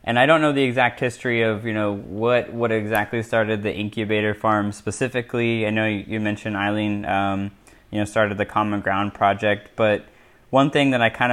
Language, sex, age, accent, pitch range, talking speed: English, male, 10-29, American, 105-115 Hz, 195 wpm